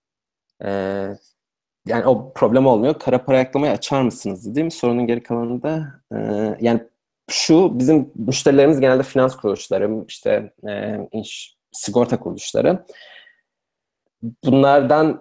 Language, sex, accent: Turkish, male, native